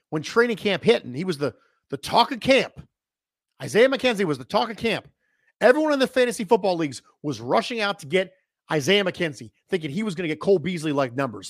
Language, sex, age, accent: English, male, 40-59, American